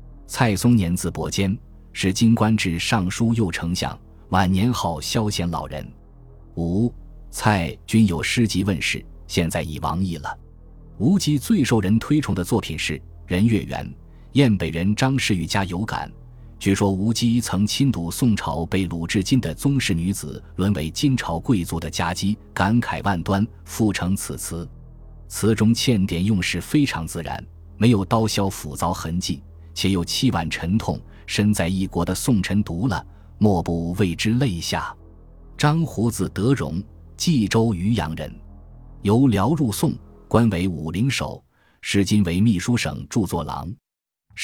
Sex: male